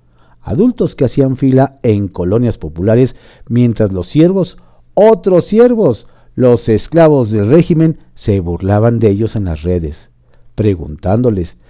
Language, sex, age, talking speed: Spanish, male, 50-69, 125 wpm